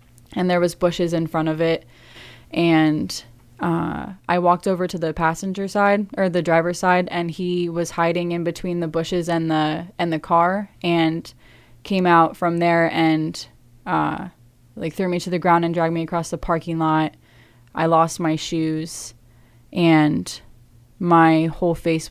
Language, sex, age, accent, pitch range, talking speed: English, female, 20-39, American, 155-175 Hz, 170 wpm